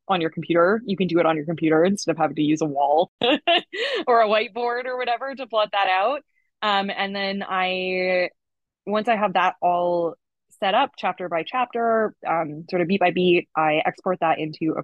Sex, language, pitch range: female, English, 165-230 Hz